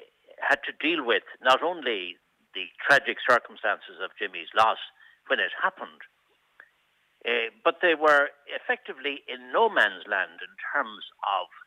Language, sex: English, male